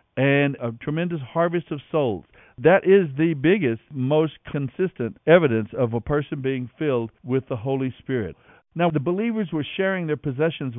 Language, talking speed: English, 160 wpm